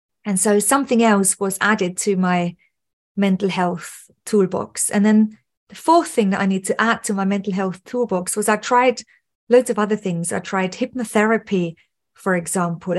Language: English